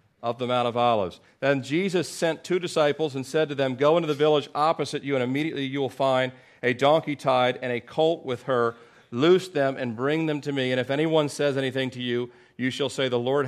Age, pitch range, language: 40-59, 130-165 Hz, English